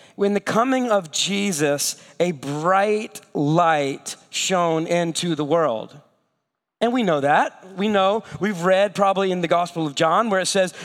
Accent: American